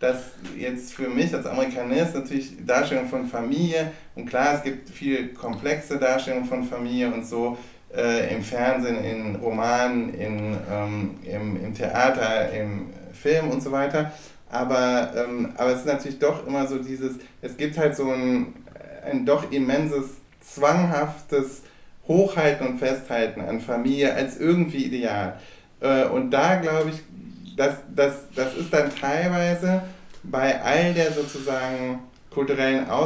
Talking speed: 145 wpm